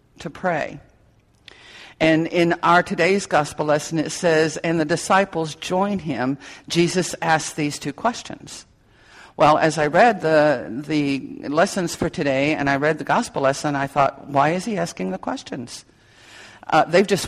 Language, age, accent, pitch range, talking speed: English, 50-69, American, 150-185 Hz, 160 wpm